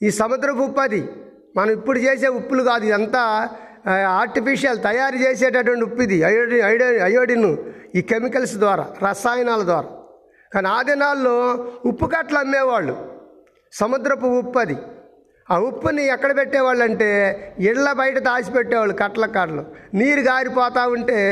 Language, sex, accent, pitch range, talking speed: Telugu, male, native, 210-270 Hz, 105 wpm